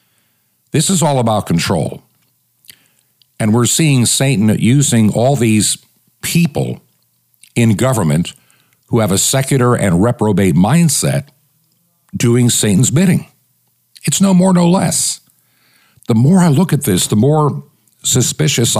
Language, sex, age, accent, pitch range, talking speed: English, male, 60-79, American, 105-140 Hz, 125 wpm